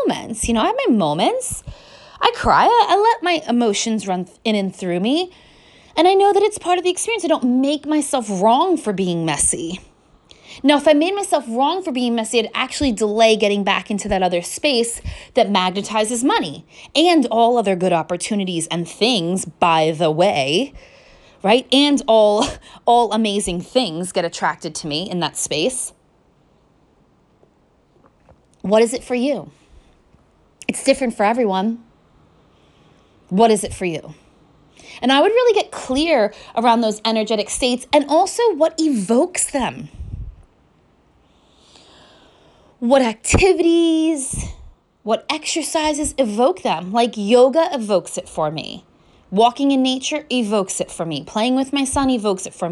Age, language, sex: 20-39, English, female